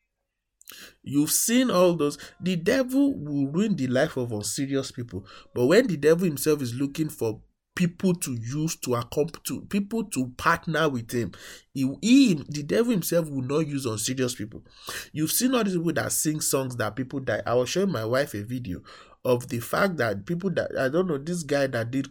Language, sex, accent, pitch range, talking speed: English, male, Nigerian, 120-175 Hz, 195 wpm